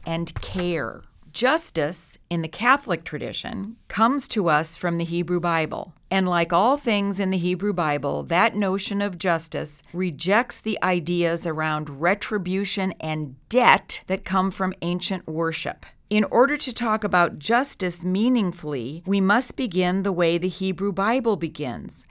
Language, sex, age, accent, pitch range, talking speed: English, female, 40-59, American, 175-220 Hz, 145 wpm